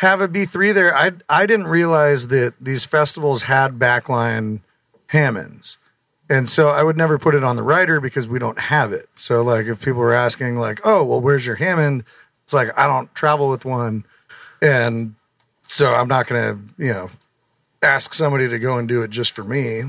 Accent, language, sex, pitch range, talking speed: American, English, male, 120-150 Hz, 200 wpm